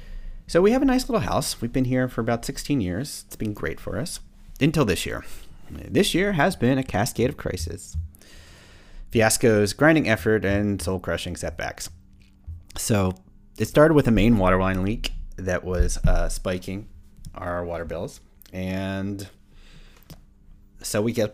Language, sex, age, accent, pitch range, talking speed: English, male, 30-49, American, 85-115 Hz, 165 wpm